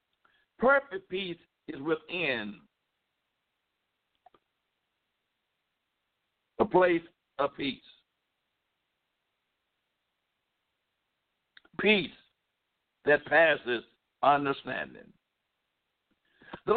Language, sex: English, male